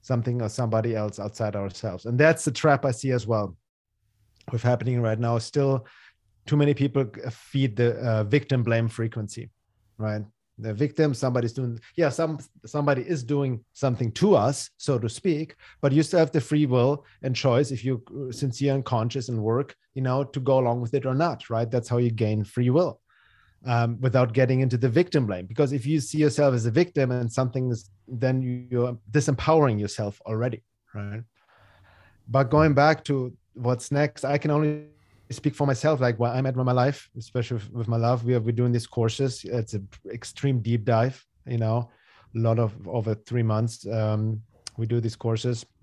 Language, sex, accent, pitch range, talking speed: English, male, German, 110-135 Hz, 195 wpm